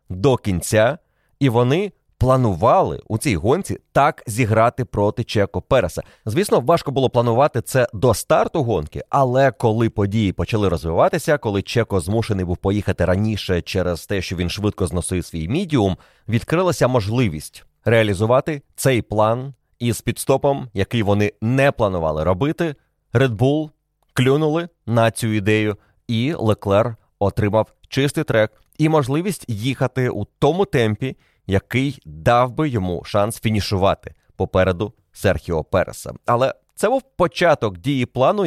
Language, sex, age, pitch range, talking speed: Ukrainian, male, 30-49, 100-135 Hz, 130 wpm